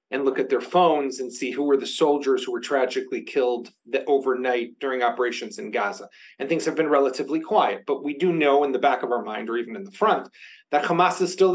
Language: English